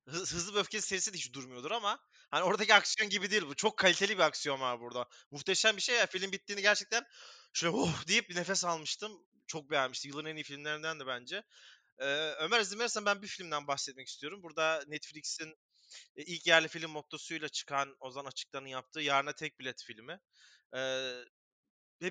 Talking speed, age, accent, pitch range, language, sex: 175 wpm, 30-49, native, 140-205 Hz, Turkish, male